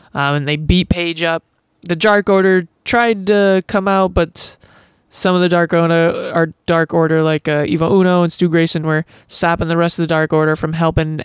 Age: 20-39